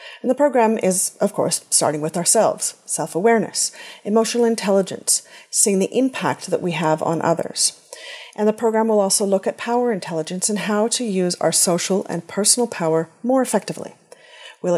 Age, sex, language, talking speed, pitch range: 40-59, female, English, 165 wpm, 175-235 Hz